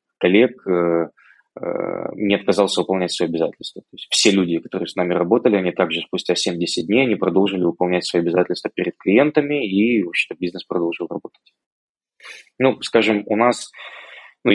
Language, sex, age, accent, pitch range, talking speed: Ukrainian, male, 20-39, native, 85-105 Hz, 155 wpm